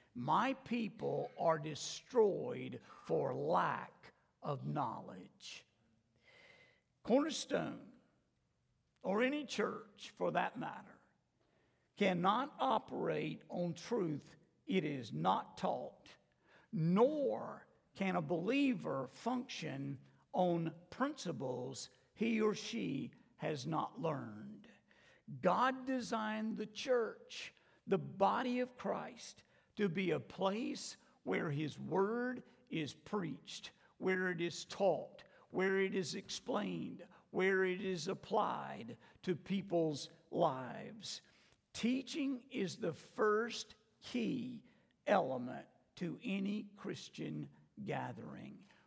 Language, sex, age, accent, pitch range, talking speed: English, male, 50-69, American, 170-245 Hz, 95 wpm